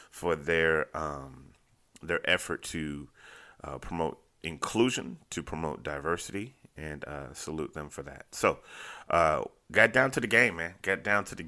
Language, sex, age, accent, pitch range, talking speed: English, male, 30-49, American, 80-95 Hz, 155 wpm